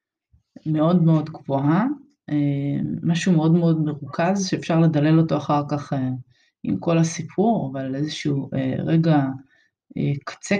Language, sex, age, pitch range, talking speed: Hebrew, female, 20-39, 145-180 Hz, 110 wpm